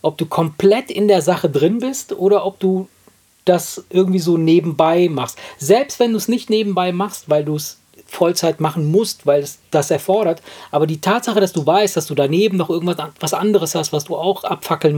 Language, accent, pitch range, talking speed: German, German, 150-190 Hz, 205 wpm